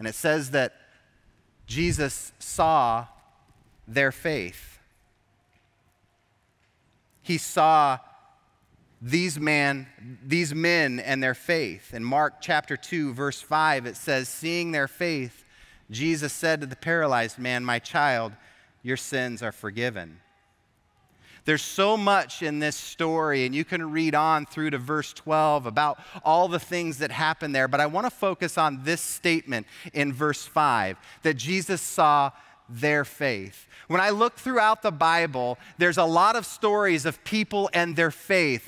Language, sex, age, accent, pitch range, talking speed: English, male, 30-49, American, 135-200 Hz, 145 wpm